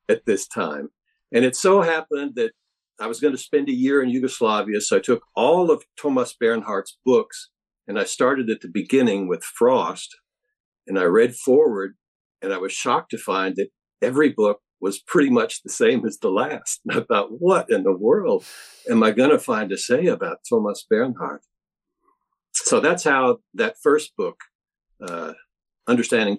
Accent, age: American, 60-79